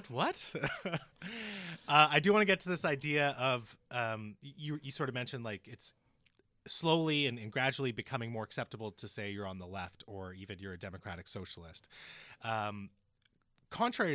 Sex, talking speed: male, 175 wpm